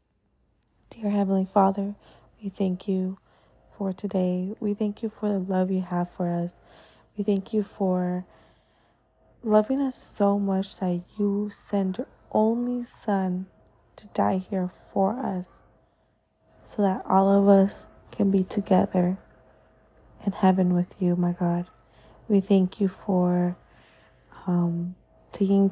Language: English